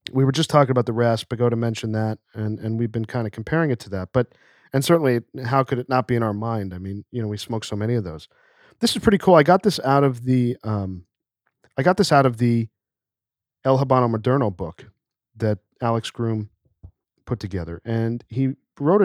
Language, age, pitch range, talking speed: English, 40-59, 115-140 Hz, 225 wpm